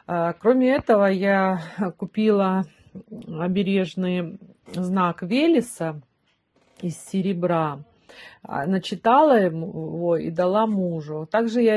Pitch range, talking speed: 170-200 Hz, 80 wpm